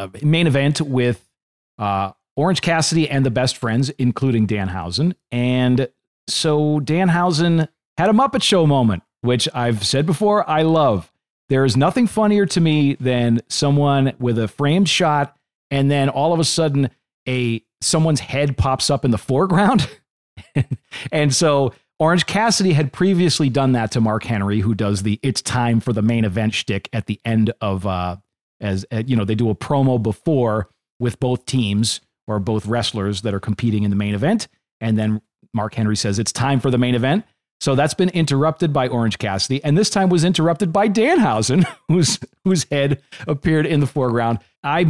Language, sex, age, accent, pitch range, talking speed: English, male, 40-59, American, 110-155 Hz, 180 wpm